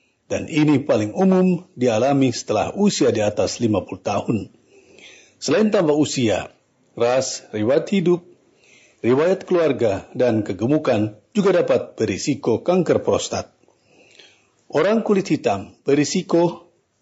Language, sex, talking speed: Indonesian, male, 105 wpm